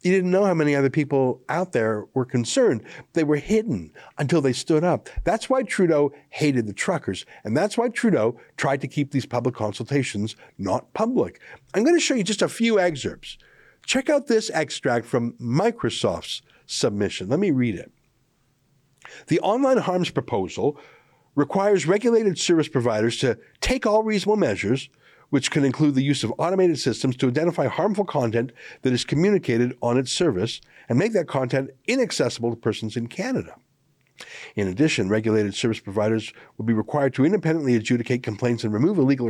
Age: 60-79